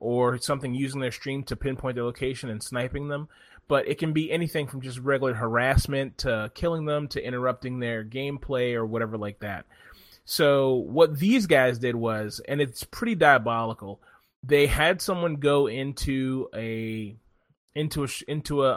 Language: English